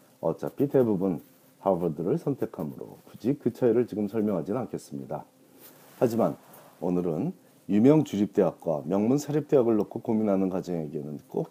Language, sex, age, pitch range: Korean, male, 40-59, 85-130 Hz